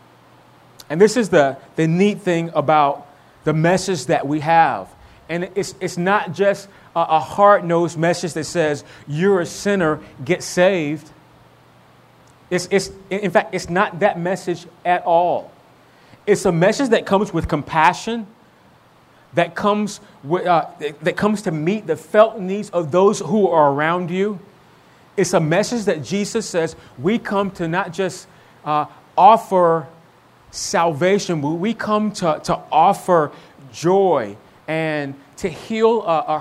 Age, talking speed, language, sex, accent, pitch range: 30-49, 145 wpm, English, male, American, 155-195 Hz